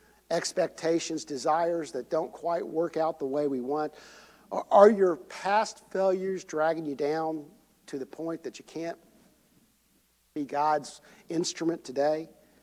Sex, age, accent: male, 50-69, American